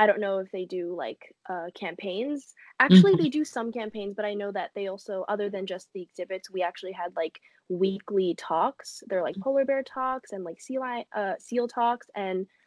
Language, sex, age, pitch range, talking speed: English, female, 10-29, 180-225 Hz, 210 wpm